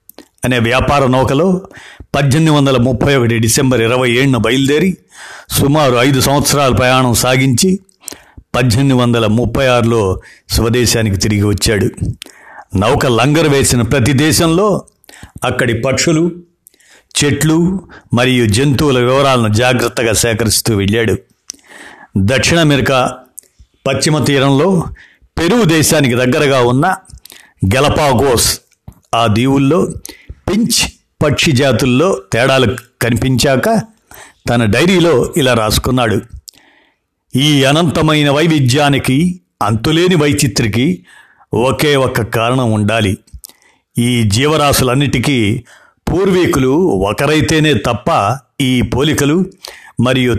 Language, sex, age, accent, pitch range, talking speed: Telugu, male, 60-79, native, 115-150 Hz, 80 wpm